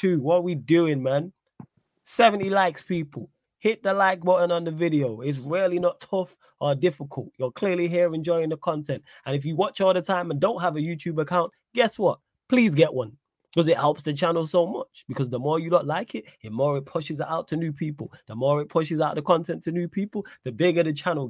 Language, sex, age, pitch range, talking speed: English, male, 20-39, 135-175 Hz, 230 wpm